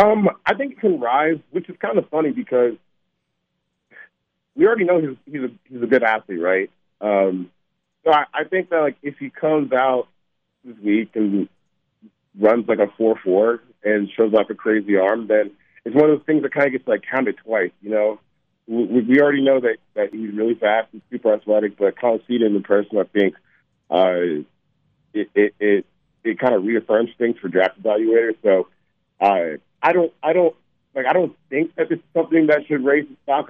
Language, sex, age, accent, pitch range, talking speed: English, male, 40-59, American, 105-145 Hz, 205 wpm